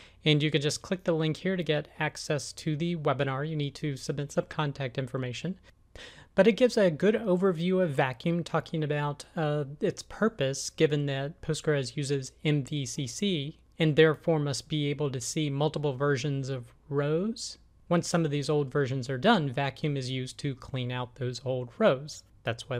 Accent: American